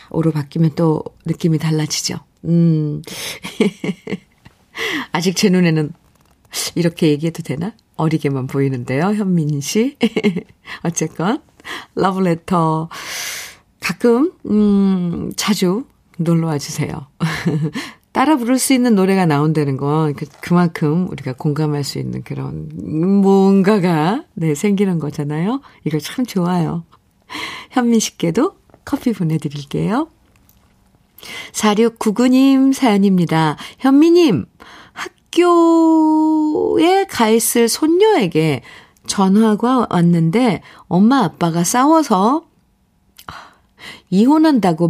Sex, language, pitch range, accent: female, Korean, 155-220 Hz, native